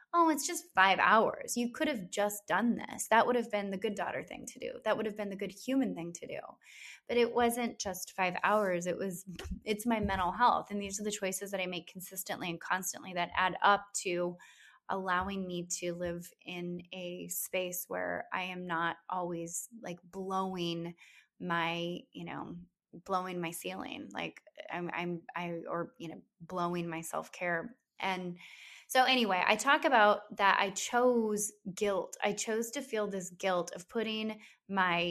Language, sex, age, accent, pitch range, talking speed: English, female, 20-39, American, 175-215 Hz, 185 wpm